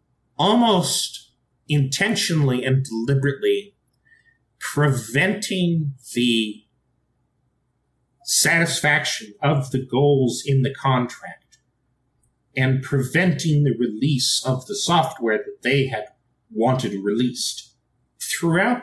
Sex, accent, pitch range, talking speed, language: male, American, 125-160 Hz, 85 wpm, English